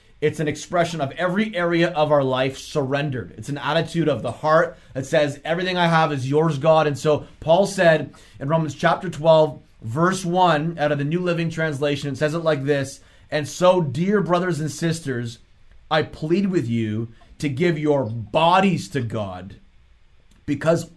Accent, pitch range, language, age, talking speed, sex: American, 135-175 Hz, English, 30-49, 175 wpm, male